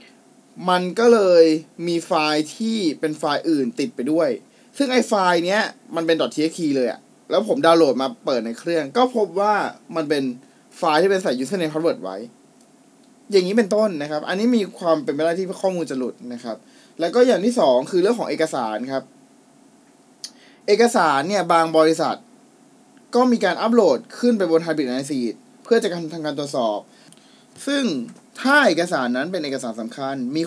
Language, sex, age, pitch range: Thai, male, 20-39, 155-235 Hz